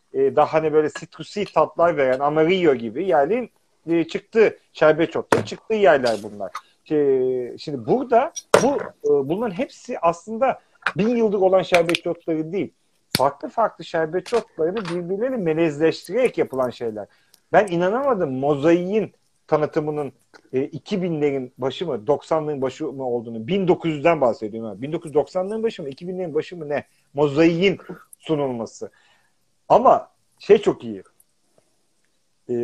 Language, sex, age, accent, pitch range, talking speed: Turkish, male, 40-59, native, 125-180 Hz, 120 wpm